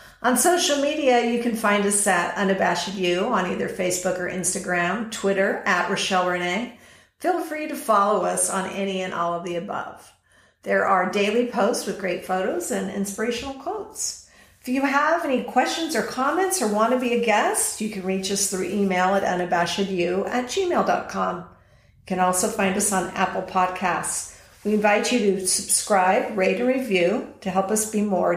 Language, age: English, 50-69